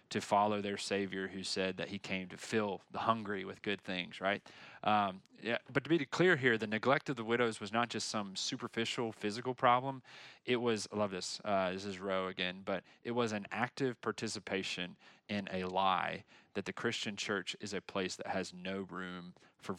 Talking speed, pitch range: 205 wpm, 95-115 Hz